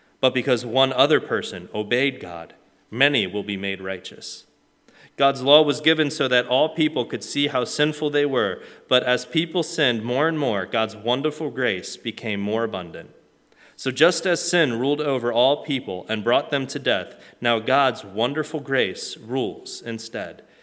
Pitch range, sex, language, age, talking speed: 115-145 Hz, male, English, 30-49, 170 wpm